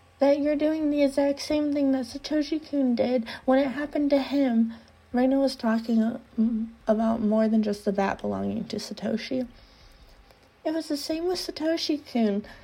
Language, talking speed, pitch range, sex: English, 155 wpm, 235-305 Hz, female